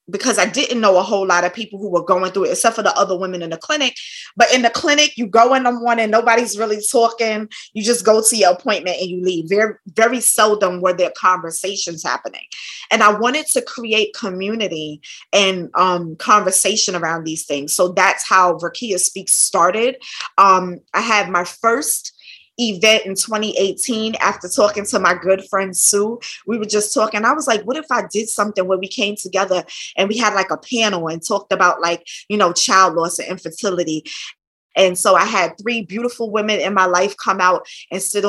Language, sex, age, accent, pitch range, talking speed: English, female, 20-39, American, 180-215 Hz, 200 wpm